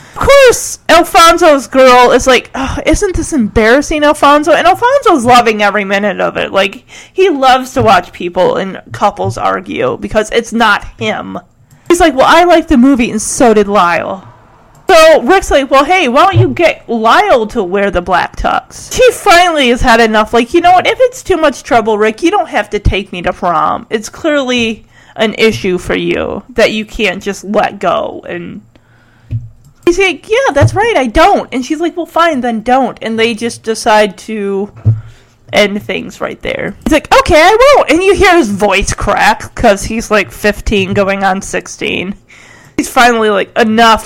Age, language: 30-49, English